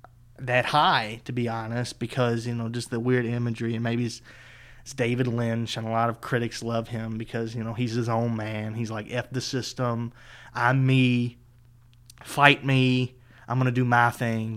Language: English